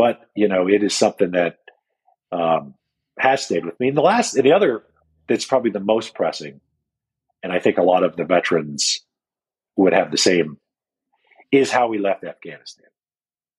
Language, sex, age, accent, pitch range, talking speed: English, male, 50-69, American, 85-120 Hz, 175 wpm